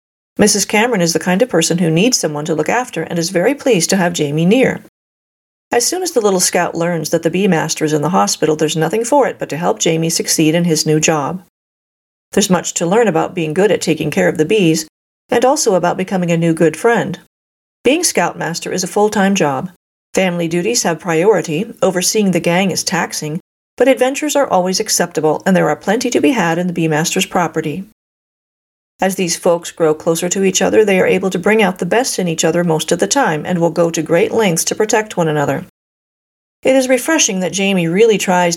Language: English